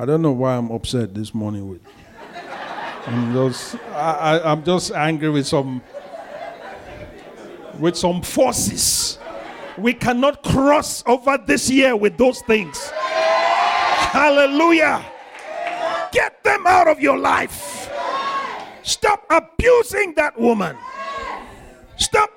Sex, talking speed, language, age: male, 115 wpm, English, 50-69